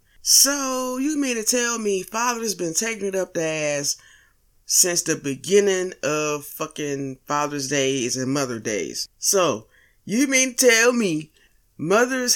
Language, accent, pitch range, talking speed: English, American, 150-225 Hz, 145 wpm